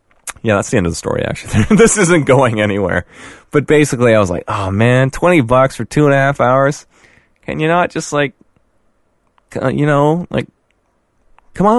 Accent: American